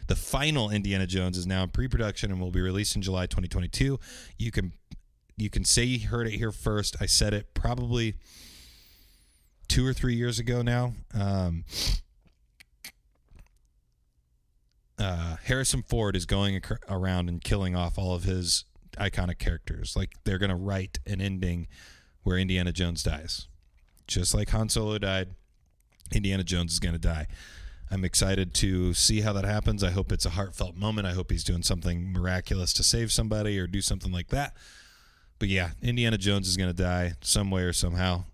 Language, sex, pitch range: English, male, 90-105 Hz